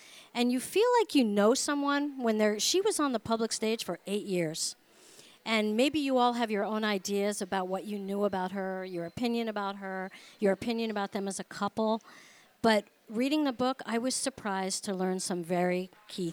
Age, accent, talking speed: 50-69, American, 200 wpm